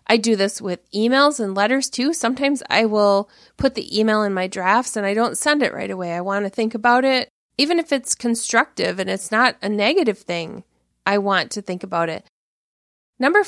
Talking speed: 210 wpm